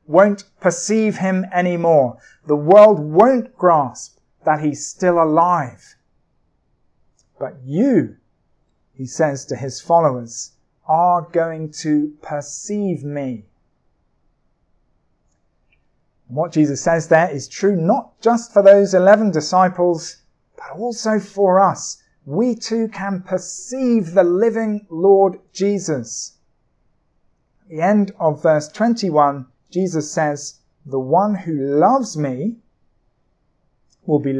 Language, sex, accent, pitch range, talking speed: English, male, British, 145-200 Hz, 110 wpm